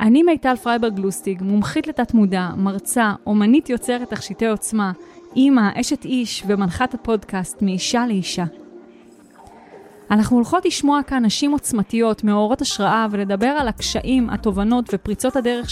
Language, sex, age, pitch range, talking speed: Hebrew, female, 20-39, 195-255 Hz, 125 wpm